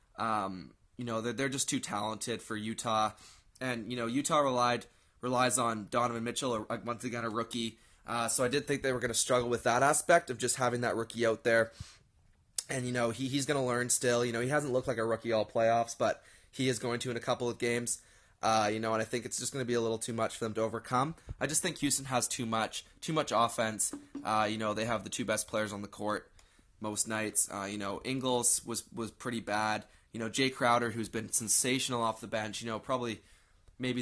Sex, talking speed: male, 240 wpm